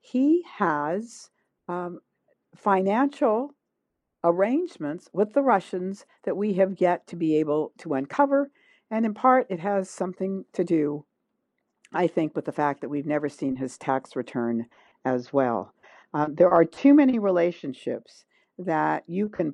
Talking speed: 145 wpm